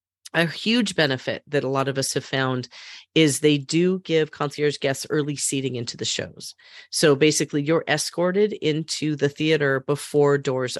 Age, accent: 30-49, American